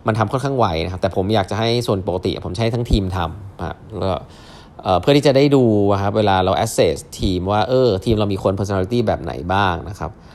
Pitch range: 90-120 Hz